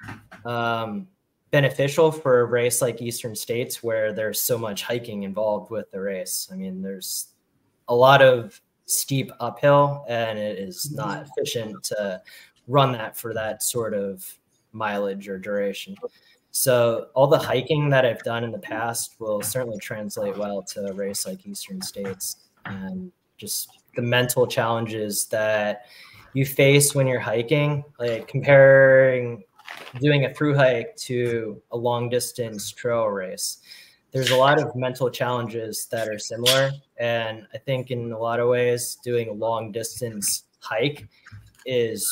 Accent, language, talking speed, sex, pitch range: American, English, 145 wpm, male, 110-130 Hz